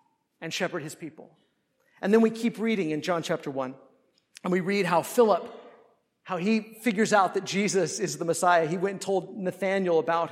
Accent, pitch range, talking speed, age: American, 175-225 Hz, 190 wpm, 50-69